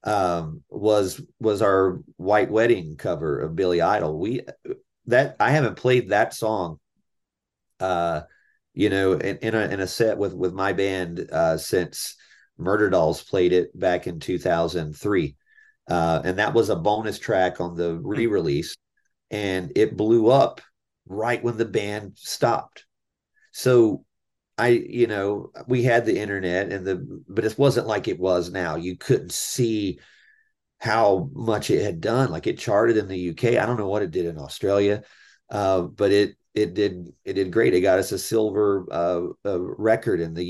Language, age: English, 40-59